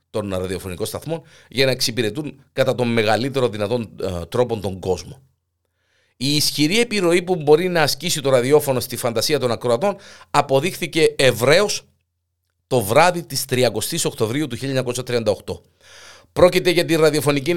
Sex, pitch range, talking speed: male, 110-150 Hz, 135 wpm